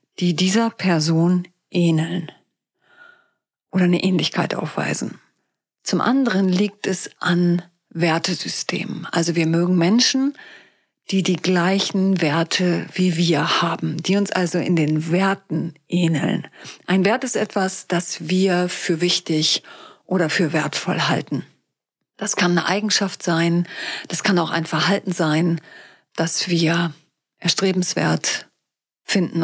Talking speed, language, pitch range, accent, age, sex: 120 wpm, German, 165-195 Hz, German, 40-59, female